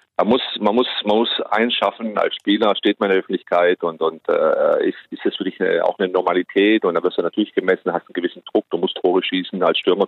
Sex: male